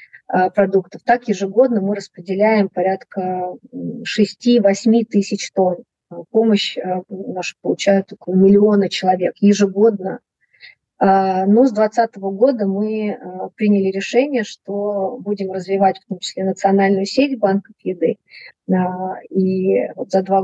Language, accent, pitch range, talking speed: Russian, native, 190-215 Hz, 105 wpm